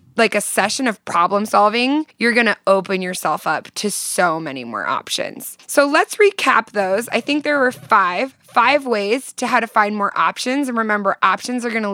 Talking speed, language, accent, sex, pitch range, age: 200 wpm, English, American, female, 195-285 Hz, 20-39